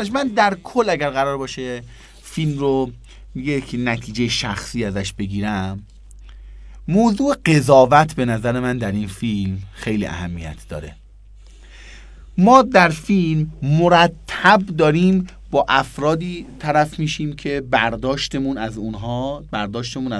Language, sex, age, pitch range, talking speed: Persian, male, 30-49, 100-155 Hz, 115 wpm